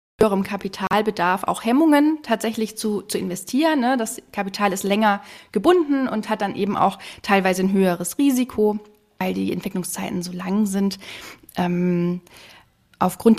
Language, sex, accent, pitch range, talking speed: German, female, German, 190-220 Hz, 135 wpm